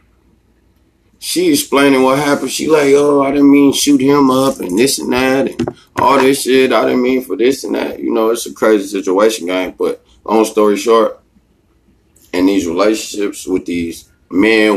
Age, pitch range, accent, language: 30-49, 95-135 Hz, American, English